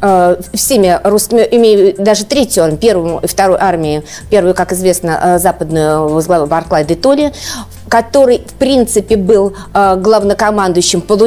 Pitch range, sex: 180-215 Hz, female